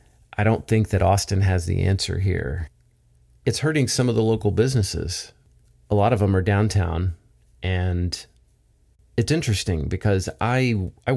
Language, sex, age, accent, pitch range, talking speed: English, male, 40-59, American, 85-105 Hz, 150 wpm